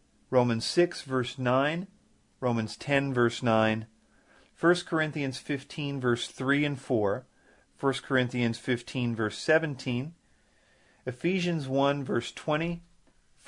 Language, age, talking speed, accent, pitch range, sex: English, 40-59, 105 wpm, American, 120-160 Hz, male